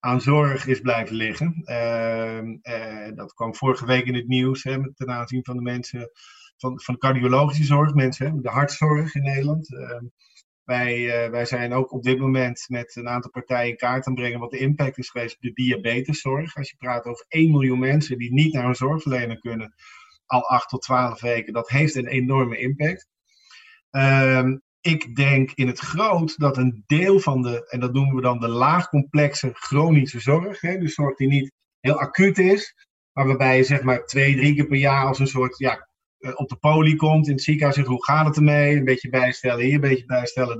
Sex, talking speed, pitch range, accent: male, 205 wpm, 125-150 Hz, Dutch